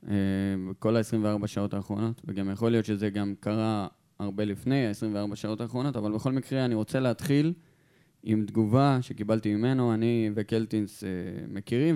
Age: 20-39